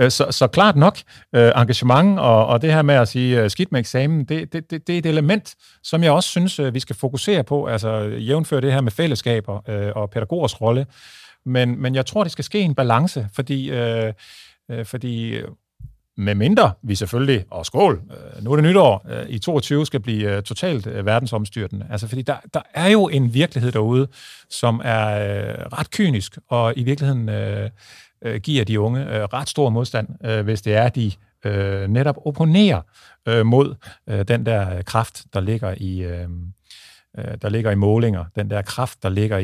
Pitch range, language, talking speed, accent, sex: 100-135 Hz, Danish, 165 wpm, native, male